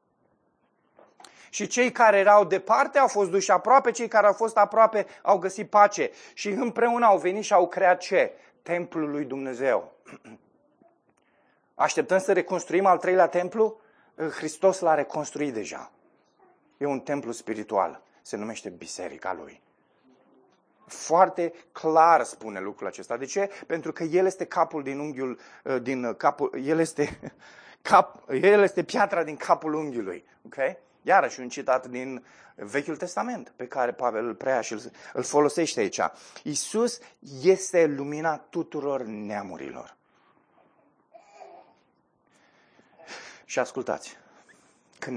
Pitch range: 140-205 Hz